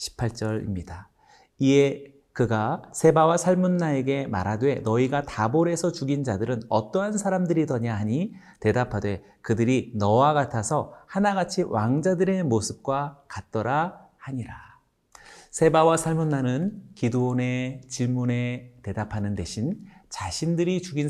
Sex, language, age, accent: male, Korean, 40-59, native